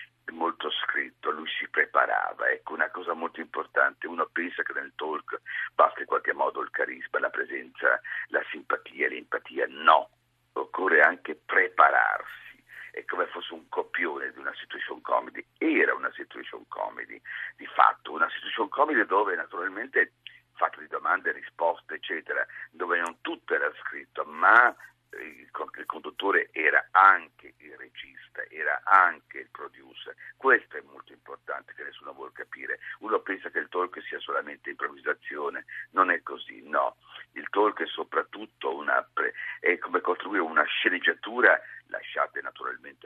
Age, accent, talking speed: 50-69, native, 140 wpm